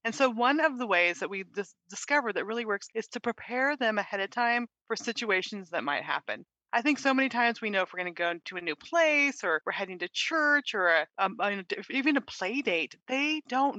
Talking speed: 250 wpm